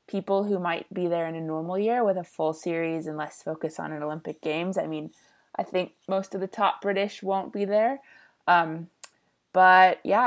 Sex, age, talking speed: female, 20-39, 205 wpm